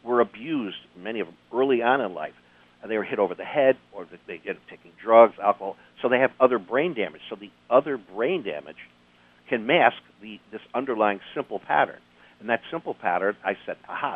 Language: English